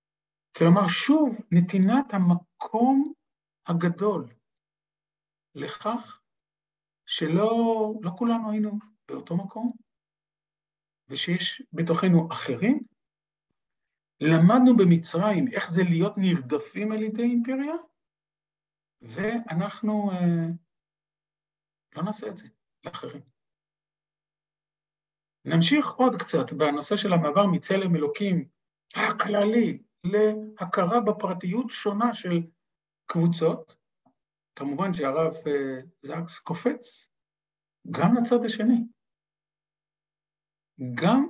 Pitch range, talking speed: 155-215 Hz, 75 wpm